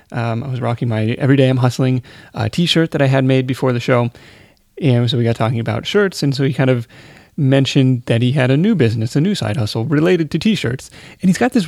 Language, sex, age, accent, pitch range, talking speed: English, male, 30-49, American, 120-155 Hz, 235 wpm